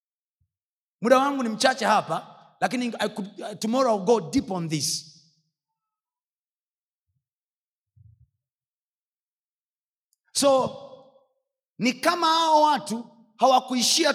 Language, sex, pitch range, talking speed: Swahili, male, 200-280 Hz, 90 wpm